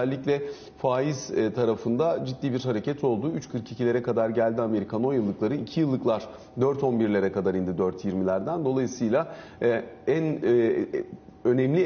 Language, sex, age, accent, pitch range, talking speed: Turkish, male, 40-59, native, 110-145 Hz, 110 wpm